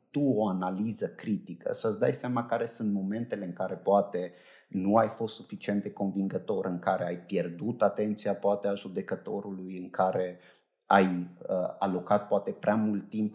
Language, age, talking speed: Romanian, 30-49, 160 wpm